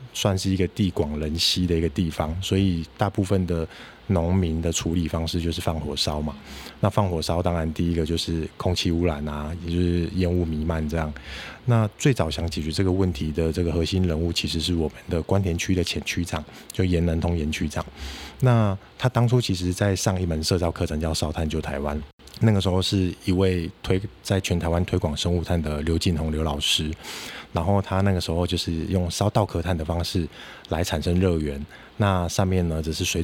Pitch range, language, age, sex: 80-95 Hz, Chinese, 20-39, male